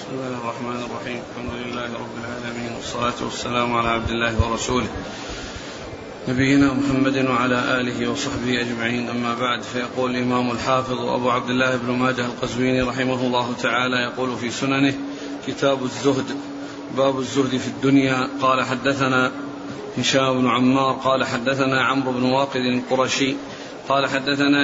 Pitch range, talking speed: 130-140 Hz, 135 wpm